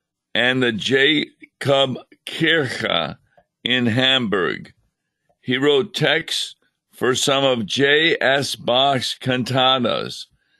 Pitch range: 115-140 Hz